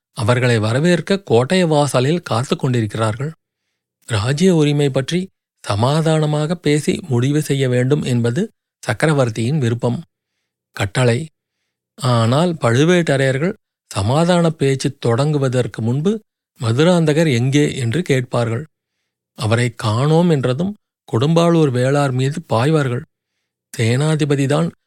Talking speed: 85 wpm